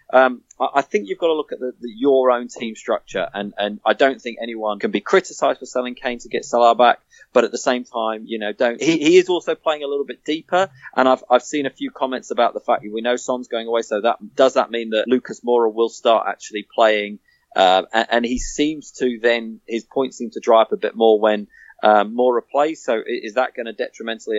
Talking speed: 250 wpm